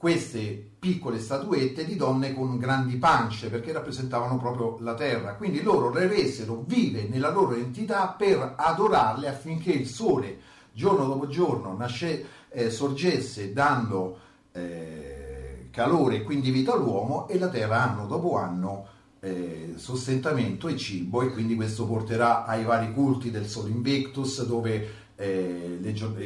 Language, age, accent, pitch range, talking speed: Italian, 40-59, native, 105-140 Hz, 140 wpm